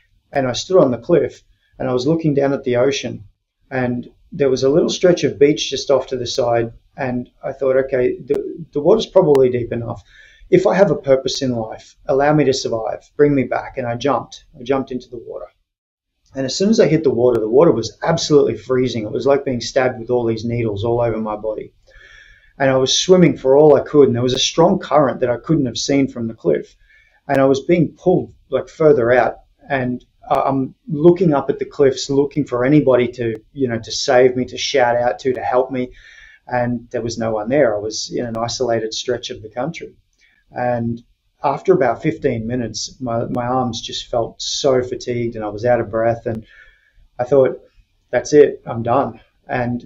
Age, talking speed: 30-49, 215 wpm